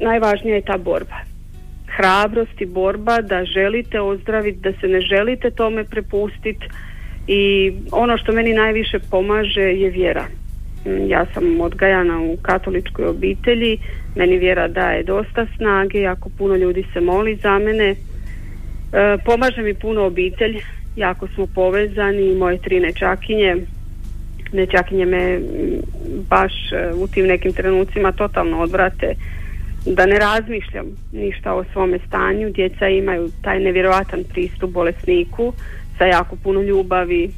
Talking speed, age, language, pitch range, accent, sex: 125 wpm, 40-59, Croatian, 185-215 Hz, native, female